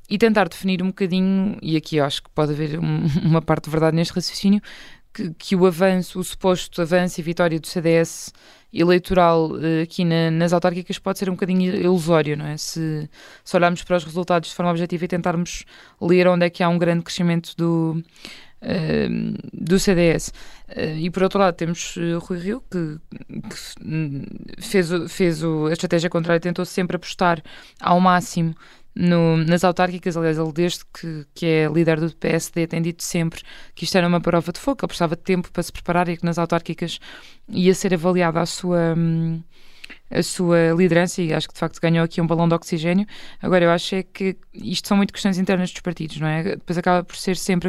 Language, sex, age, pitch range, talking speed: Portuguese, female, 20-39, 165-185 Hz, 205 wpm